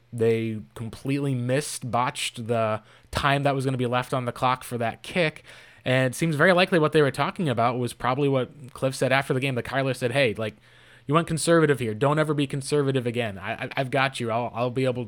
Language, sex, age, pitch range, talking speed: English, male, 20-39, 120-150 Hz, 230 wpm